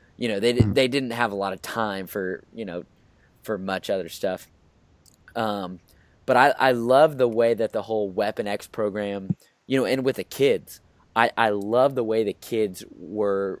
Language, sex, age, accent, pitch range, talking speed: English, male, 10-29, American, 100-120 Hz, 195 wpm